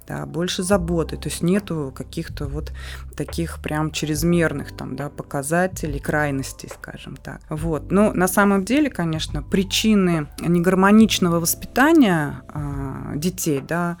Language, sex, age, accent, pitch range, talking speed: Russian, female, 20-39, native, 155-195 Hz, 100 wpm